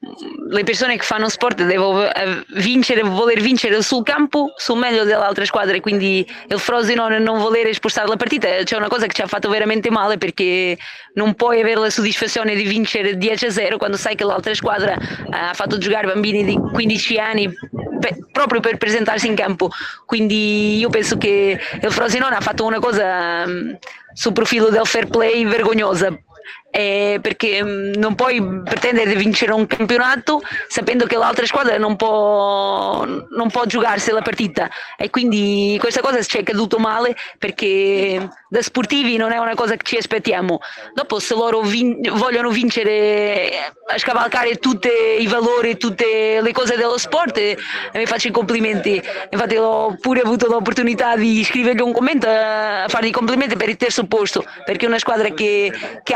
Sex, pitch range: female, 210-235 Hz